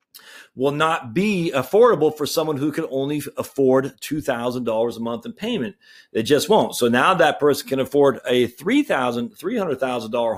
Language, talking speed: English, 150 wpm